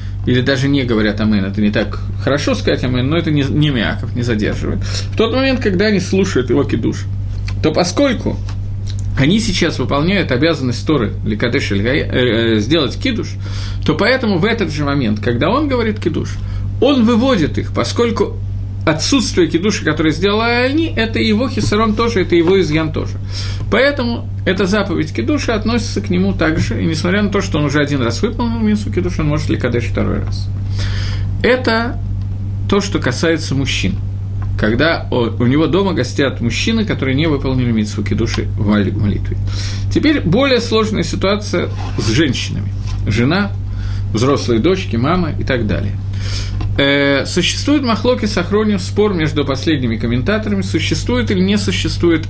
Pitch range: 100-120 Hz